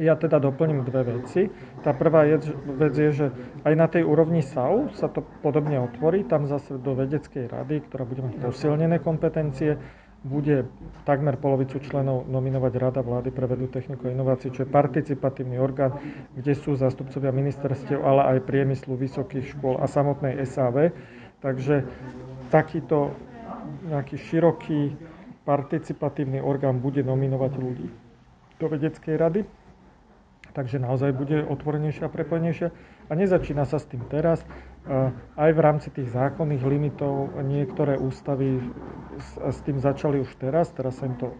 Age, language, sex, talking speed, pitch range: 40-59, Slovak, male, 140 wpm, 130-150 Hz